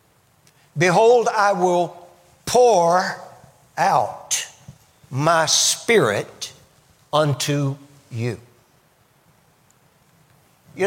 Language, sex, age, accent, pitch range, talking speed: English, male, 60-79, American, 145-200 Hz, 55 wpm